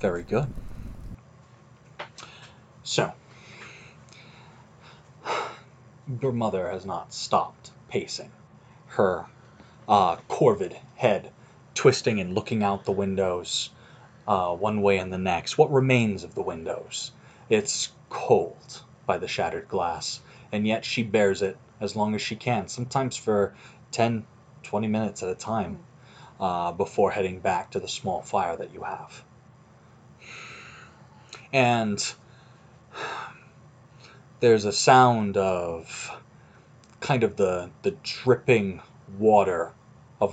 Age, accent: 30-49, American